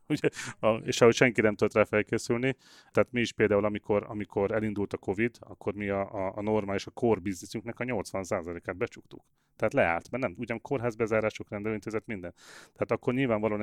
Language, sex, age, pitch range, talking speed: Hungarian, male, 30-49, 95-110 Hz, 170 wpm